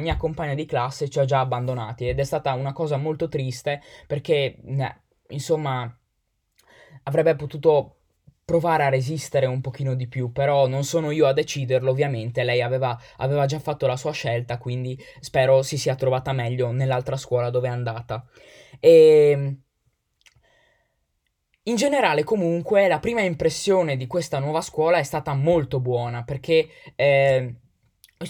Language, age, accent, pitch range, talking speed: Italian, 20-39, native, 130-165 Hz, 155 wpm